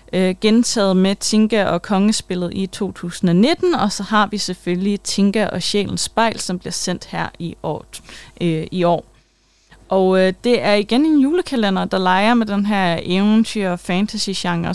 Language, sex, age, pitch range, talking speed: Danish, female, 20-39, 180-220 Hz, 165 wpm